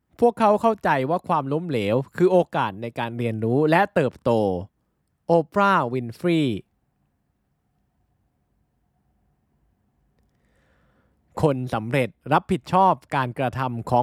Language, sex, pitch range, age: Thai, male, 115-165 Hz, 20-39